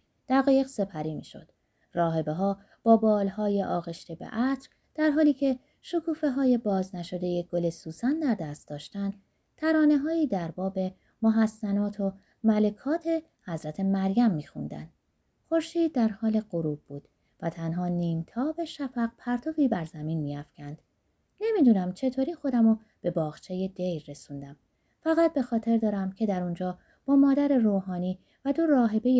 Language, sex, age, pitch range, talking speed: Persian, female, 20-39, 170-275 Hz, 140 wpm